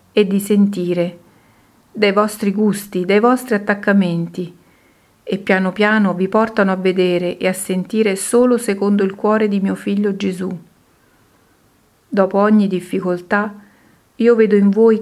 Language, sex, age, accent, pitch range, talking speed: Italian, female, 50-69, native, 185-210 Hz, 135 wpm